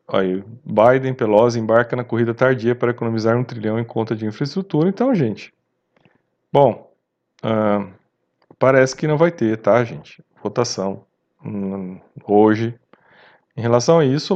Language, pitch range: Portuguese, 105-135 Hz